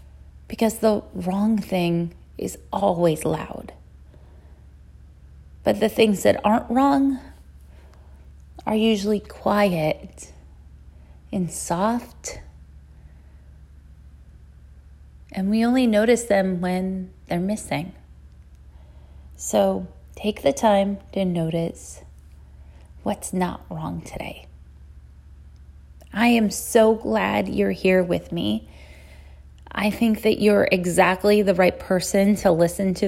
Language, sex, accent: English, female, American